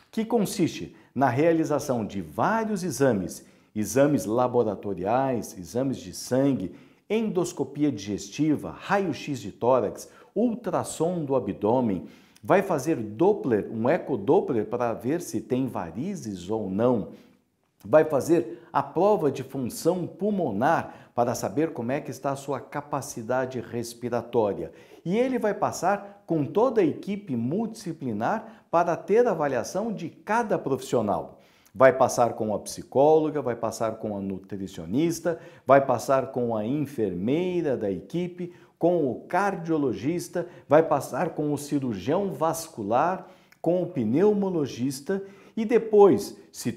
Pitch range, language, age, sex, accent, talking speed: 125-180 Hz, Portuguese, 50-69, male, Brazilian, 125 wpm